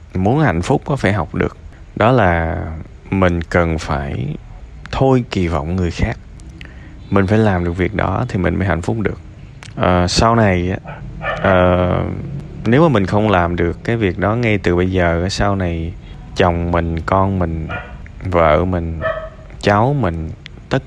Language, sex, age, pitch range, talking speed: Vietnamese, male, 20-39, 85-120 Hz, 165 wpm